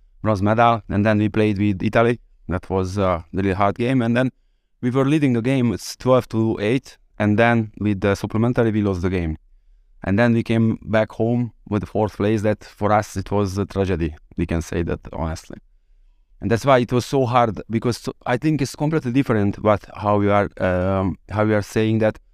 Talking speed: 210 wpm